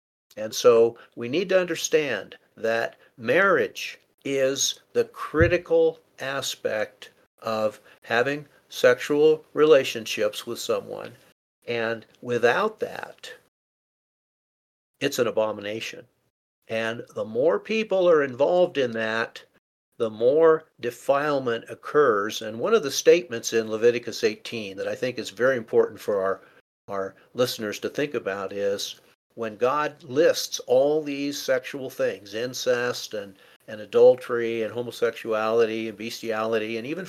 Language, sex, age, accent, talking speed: English, male, 60-79, American, 120 wpm